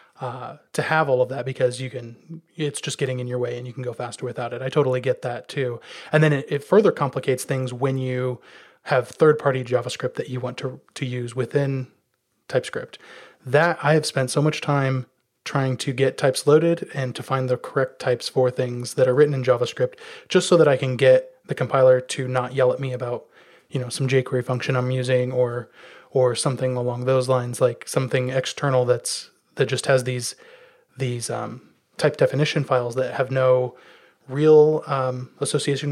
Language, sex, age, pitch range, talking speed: English, male, 20-39, 125-145 Hz, 195 wpm